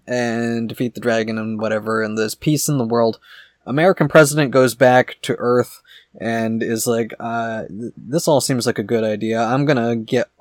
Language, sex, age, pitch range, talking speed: English, male, 20-39, 115-145 Hz, 185 wpm